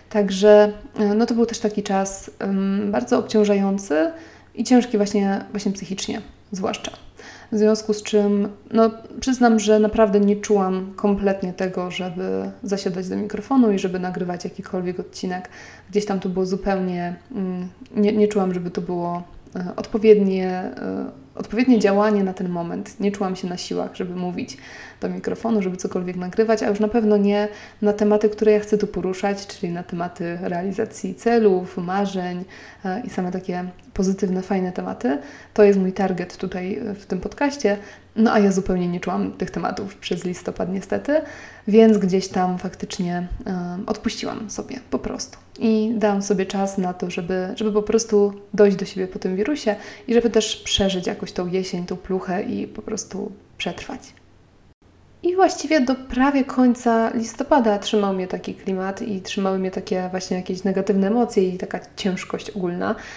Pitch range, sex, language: 190-220 Hz, female, Polish